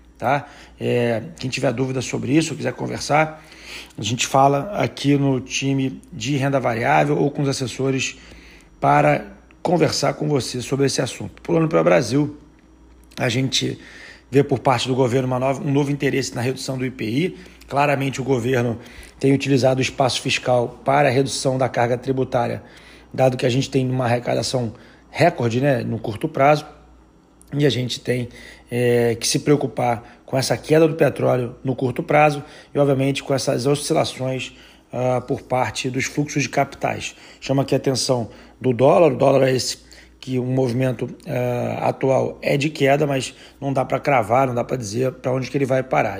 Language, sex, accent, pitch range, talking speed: Portuguese, male, Brazilian, 125-140 Hz, 180 wpm